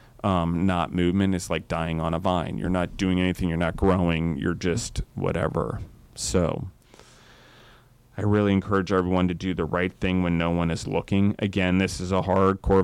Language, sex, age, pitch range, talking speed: English, male, 30-49, 90-100 Hz, 185 wpm